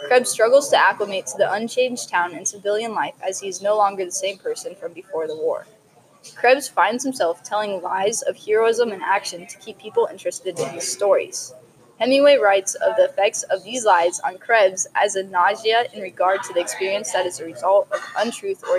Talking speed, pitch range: 205 wpm, 195-275 Hz